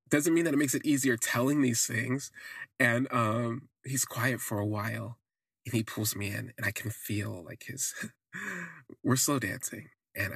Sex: male